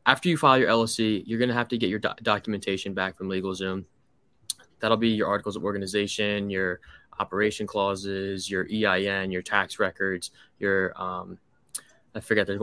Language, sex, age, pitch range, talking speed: English, male, 20-39, 100-115 Hz, 170 wpm